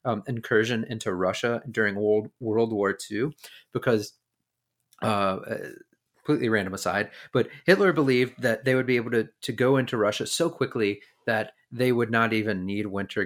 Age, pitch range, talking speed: 30-49, 105-125 Hz, 165 wpm